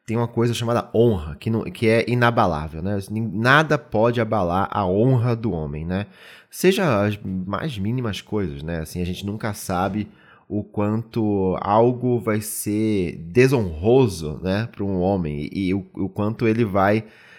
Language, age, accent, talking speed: Portuguese, 20-39, Brazilian, 160 wpm